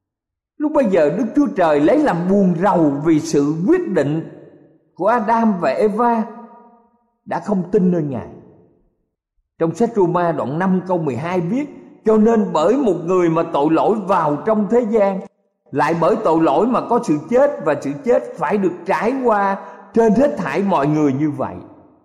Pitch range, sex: 130-215 Hz, male